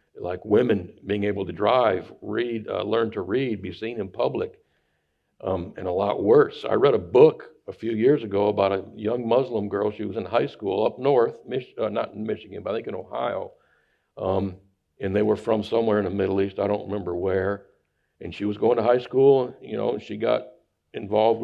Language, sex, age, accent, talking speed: English, male, 60-79, American, 210 wpm